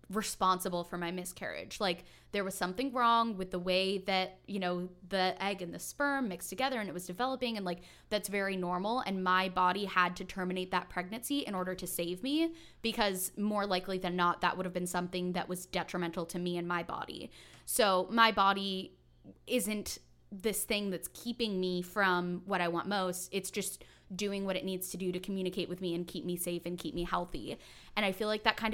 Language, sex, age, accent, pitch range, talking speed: English, female, 10-29, American, 180-205 Hz, 215 wpm